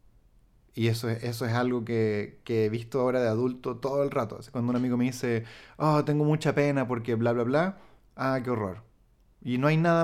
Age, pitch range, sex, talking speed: 30-49, 115-145 Hz, male, 210 wpm